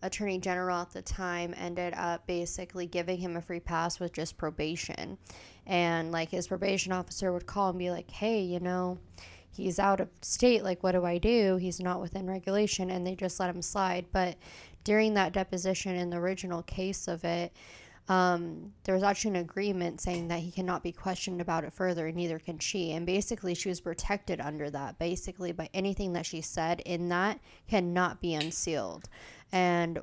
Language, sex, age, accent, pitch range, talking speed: English, female, 20-39, American, 170-185 Hz, 190 wpm